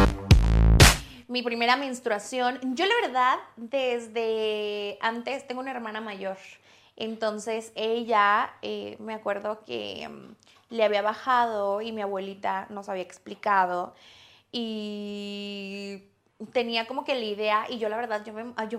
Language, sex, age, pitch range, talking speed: Spanish, female, 20-39, 205-270 Hz, 130 wpm